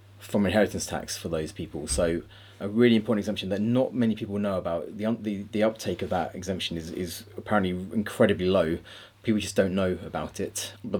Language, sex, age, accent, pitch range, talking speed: English, male, 30-49, British, 95-110 Hz, 195 wpm